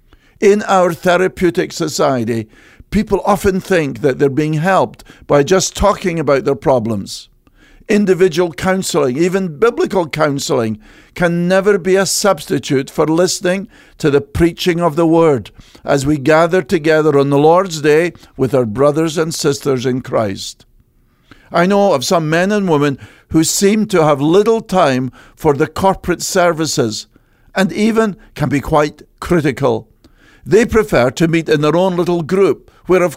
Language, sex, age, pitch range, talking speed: English, male, 50-69, 140-185 Hz, 150 wpm